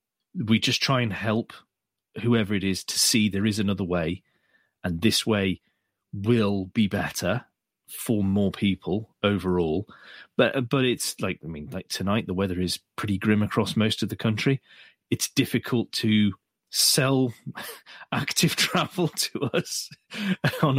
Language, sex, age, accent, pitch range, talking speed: English, male, 30-49, British, 100-120 Hz, 145 wpm